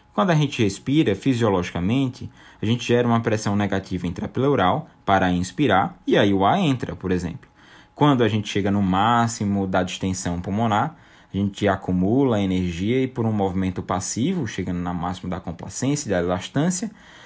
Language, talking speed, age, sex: Portuguese, 165 wpm, 20-39, male